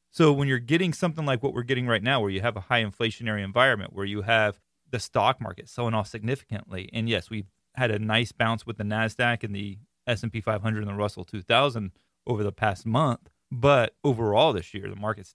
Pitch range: 105-125 Hz